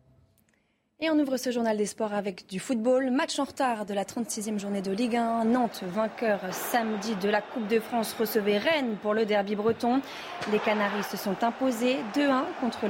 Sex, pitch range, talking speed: female, 210-265 Hz, 190 wpm